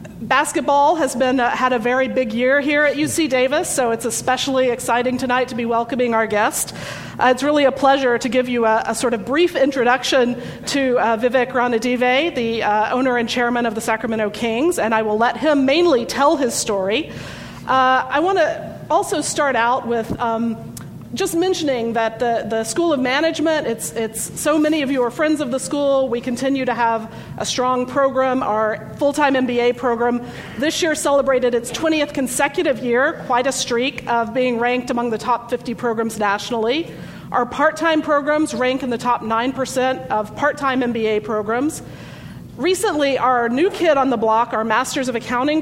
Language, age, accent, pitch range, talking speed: English, 40-59, American, 235-280 Hz, 185 wpm